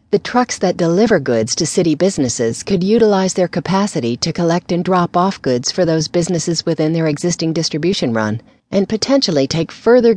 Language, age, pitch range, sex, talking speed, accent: English, 40-59, 135-195 Hz, female, 175 wpm, American